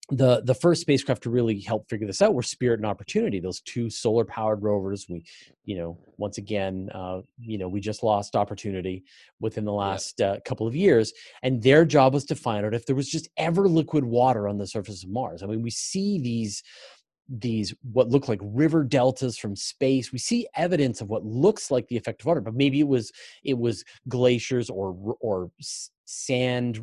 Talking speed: 205 wpm